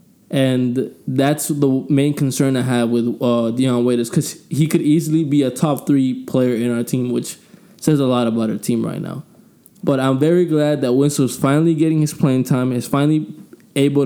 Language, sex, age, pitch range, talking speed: English, male, 20-39, 135-165 Hz, 195 wpm